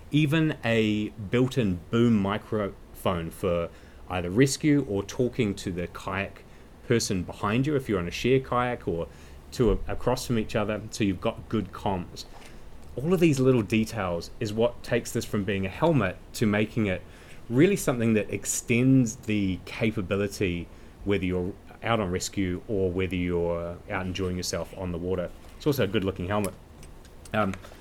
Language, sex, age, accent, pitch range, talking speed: English, male, 30-49, Australian, 95-120 Hz, 165 wpm